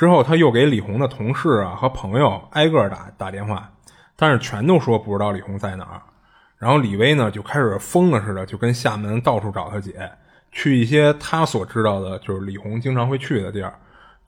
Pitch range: 105-145 Hz